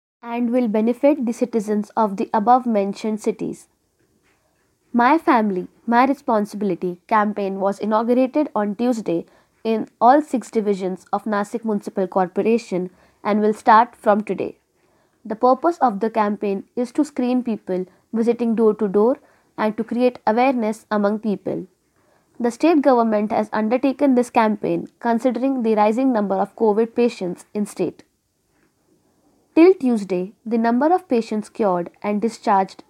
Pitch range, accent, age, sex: 205-250 Hz, native, 20-39, female